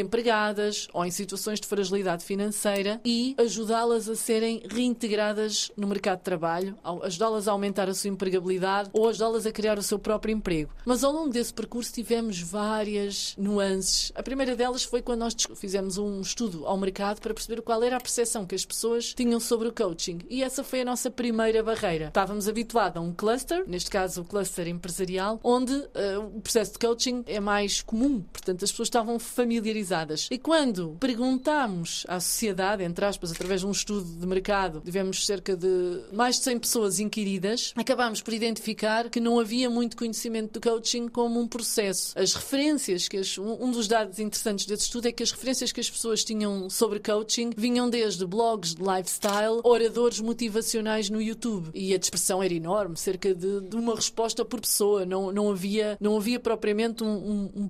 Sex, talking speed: female, 180 wpm